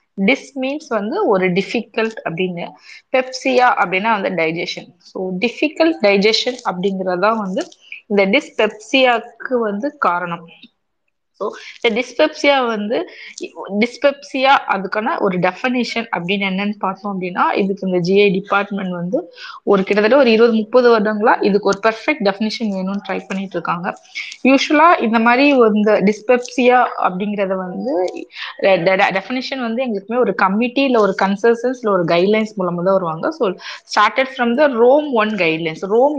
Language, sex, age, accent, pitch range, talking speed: Tamil, female, 20-39, native, 195-250 Hz, 50 wpm